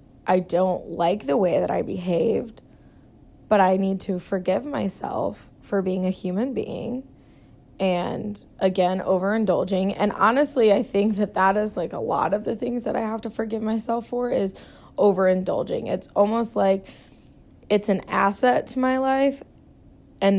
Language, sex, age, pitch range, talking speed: English, female, 20-39, 185-215 Hz, 160 wpm